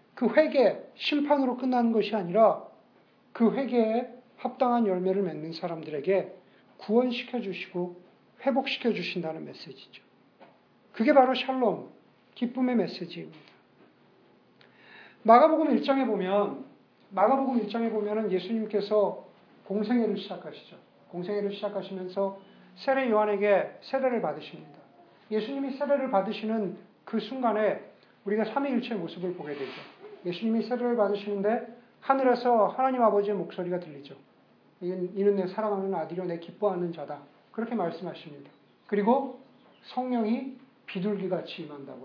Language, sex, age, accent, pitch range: Korean, male, 50-69, native, 195-250 Hz